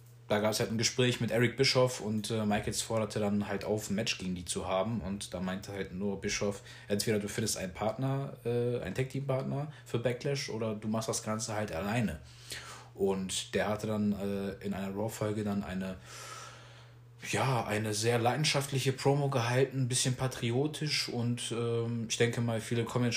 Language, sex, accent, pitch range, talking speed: German, male, German, 105-125 Hz, 185 wpm